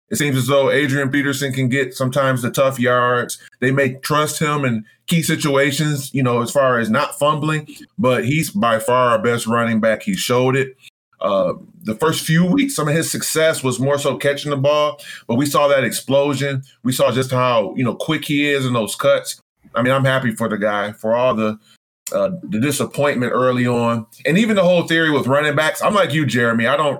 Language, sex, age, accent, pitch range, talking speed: English, male, 20-39, American, 120-150 Hz, 220 wpm